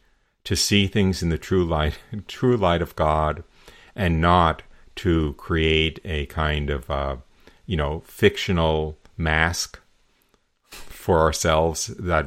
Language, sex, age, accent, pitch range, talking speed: English, male, 50-69, American, 75-90 Hz, 125 wpm